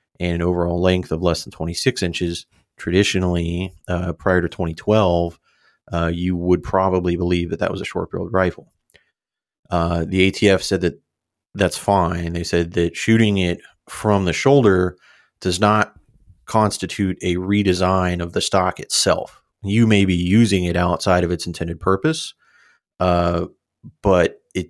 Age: 30-49